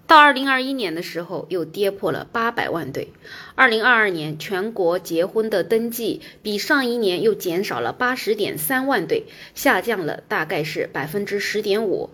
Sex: female